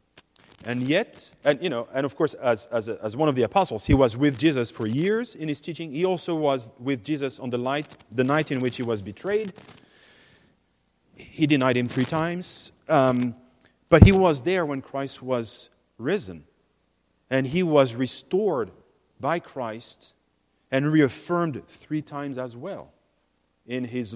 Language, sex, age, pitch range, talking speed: English, male, 40-59, 115-160 Hz, 165 wpm